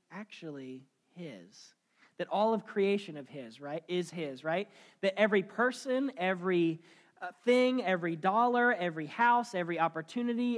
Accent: American